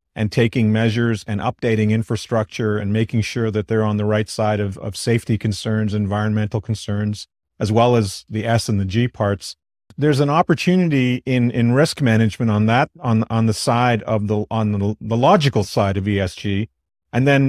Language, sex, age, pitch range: English, male, 40-59, 105-125 Hz